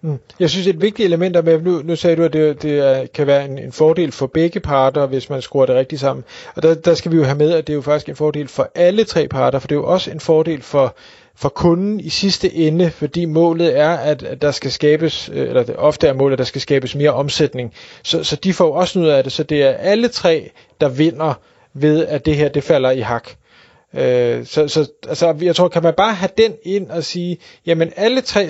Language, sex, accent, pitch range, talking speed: Danish, male, native, 150-180 Hz, 255 wpm